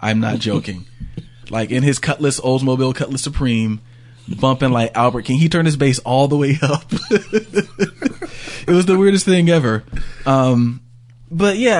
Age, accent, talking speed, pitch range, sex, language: 20-39, American, 160 wpm, 110-130 Hz, male, English